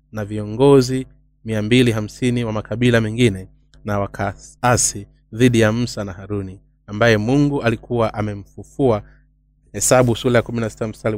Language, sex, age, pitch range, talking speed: Swahili, male, 30-49, 105-130 Hz, 125 wpm